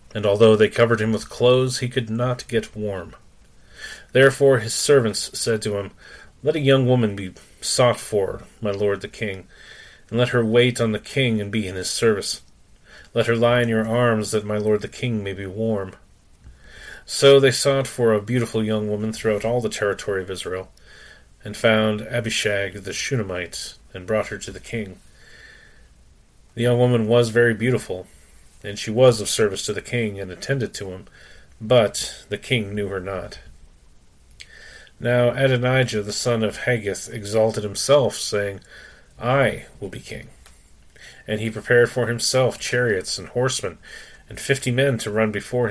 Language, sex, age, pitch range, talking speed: English, male, 30-49, 100-120 Hz, 170 wpm